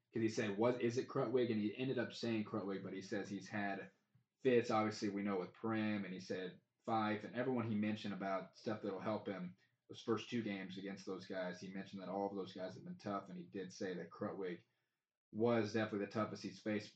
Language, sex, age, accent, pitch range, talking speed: English, male, 20-39, American, 100-115 Hz, 230 wpm